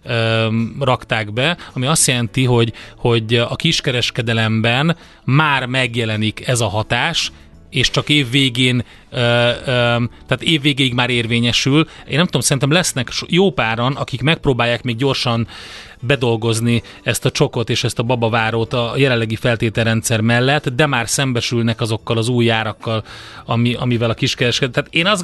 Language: Hungarian